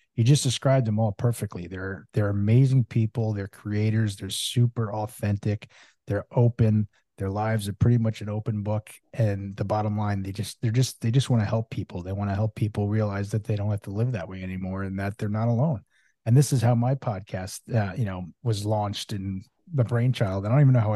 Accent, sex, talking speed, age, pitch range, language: American, male, 225 wpm, 30-49, 100-120 Hz, English